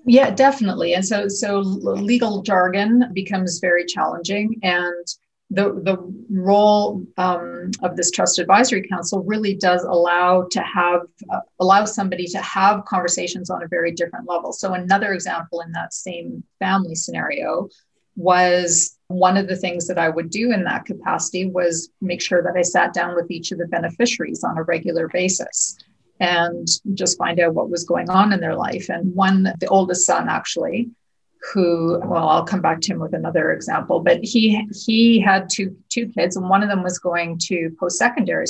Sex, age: female, 40-59